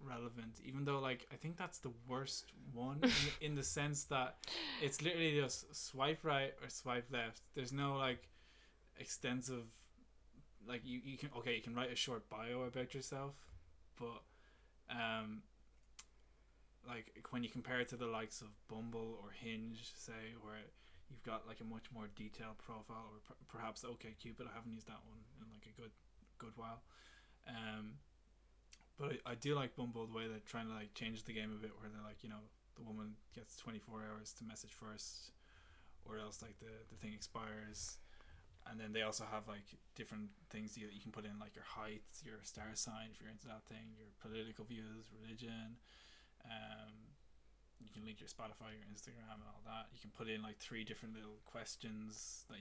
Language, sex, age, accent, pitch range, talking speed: English, male, 20-39, Irish, 110-120 Hz, 190 wpm